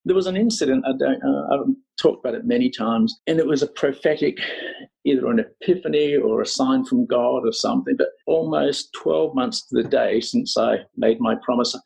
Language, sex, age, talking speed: English, male, 50-69, 200 wpm